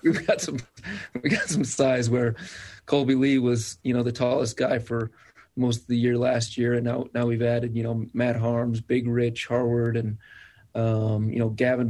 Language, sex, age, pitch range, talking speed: English, male, 30-49, 115-125 Hz, 200 wpm